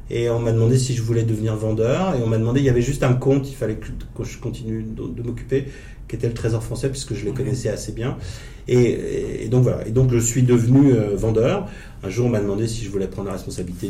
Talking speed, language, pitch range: 250 wpm, French, 105-125 Hz